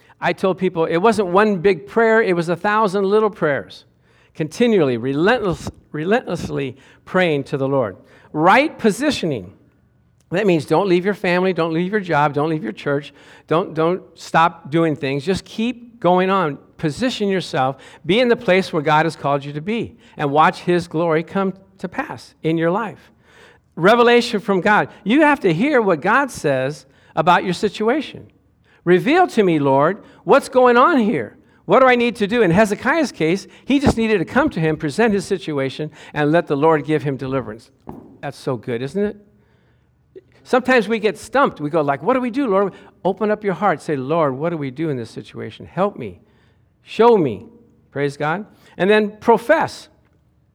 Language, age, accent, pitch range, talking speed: English, 50-69, American, 150-215 Hz, 185 wpm